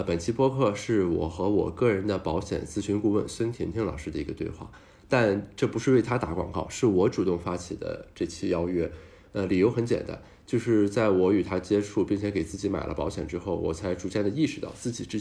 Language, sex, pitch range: Chinese, male, 95-115 Hz